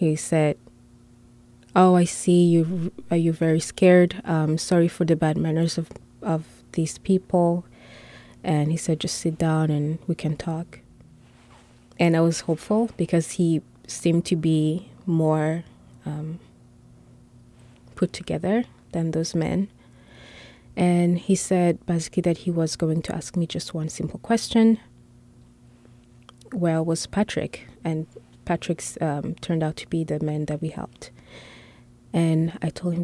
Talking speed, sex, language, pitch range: 145 wpm, female, English, 150-175 Hz